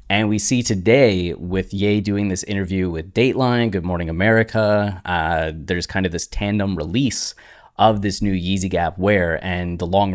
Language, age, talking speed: English, 20-39, 175 wpm